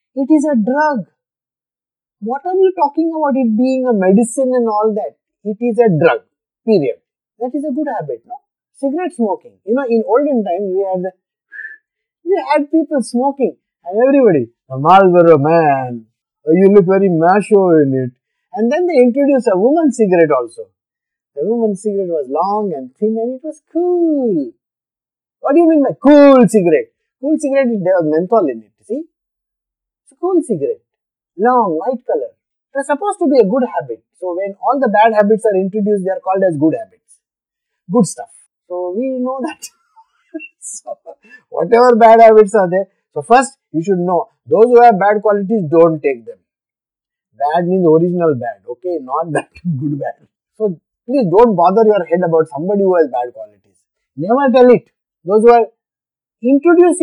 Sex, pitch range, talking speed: male, 180-280 Hz, 175 wpm